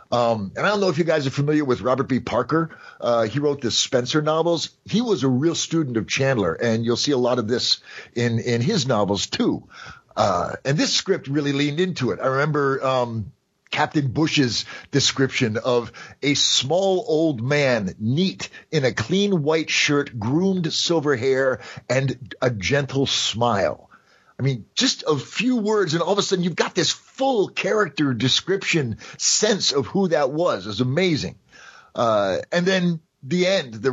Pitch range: 125-165 Hz